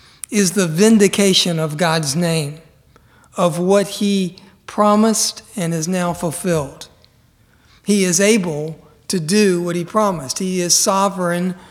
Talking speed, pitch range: 130 wpm, 165-200 Hz